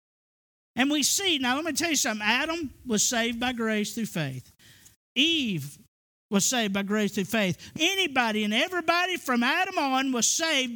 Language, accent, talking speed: English, American, 175 wpm